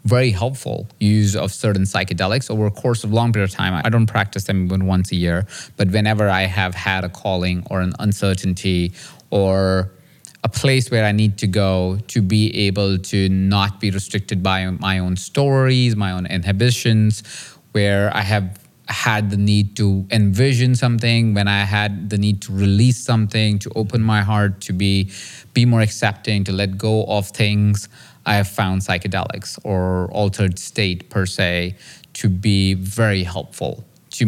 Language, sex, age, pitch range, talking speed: English, male, 30-49, 95-110 Hz, 175 wpm